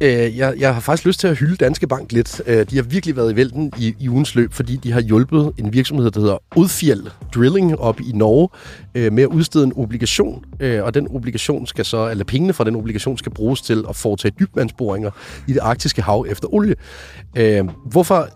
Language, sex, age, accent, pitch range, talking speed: Danish, male, 30-49, native, 105-135 Hz, 205 wpm